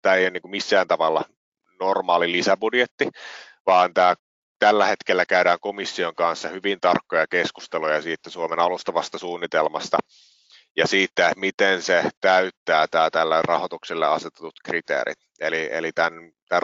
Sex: male